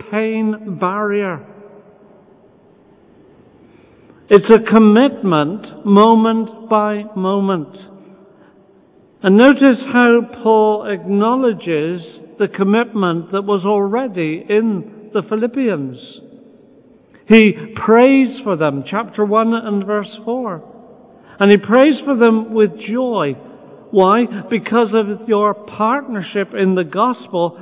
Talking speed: 95 wpm